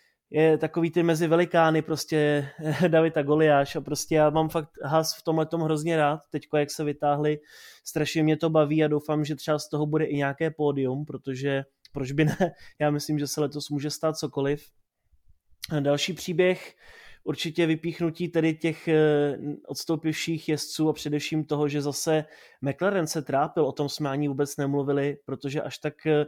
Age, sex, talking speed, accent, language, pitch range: 20-39, male, 170 wpm, native, Czech, 140-155 Hz